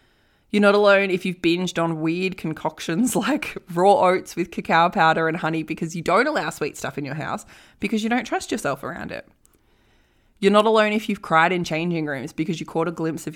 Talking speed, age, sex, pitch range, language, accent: 215 wpm, 20-39, female, 160-210 Hz, English, Australian